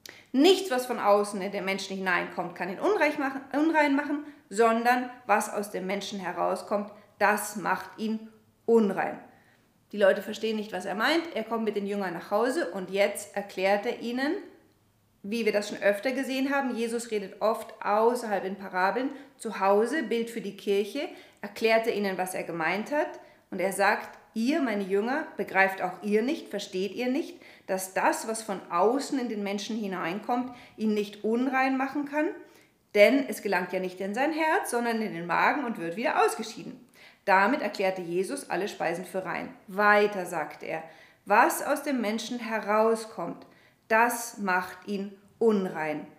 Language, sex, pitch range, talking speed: German, female, 195-250 Hz, 170 wpm